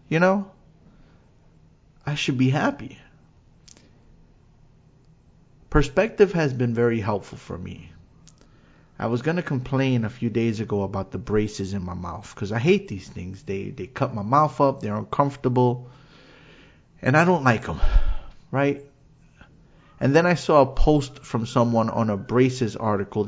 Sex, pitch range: male, 105-140 Hz